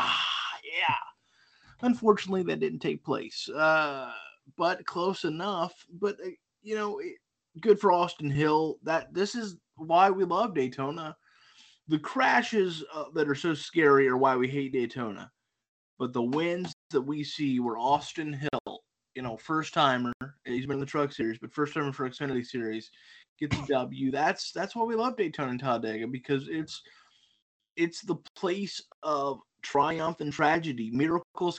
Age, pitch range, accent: 20-39, 130-165 Hz, American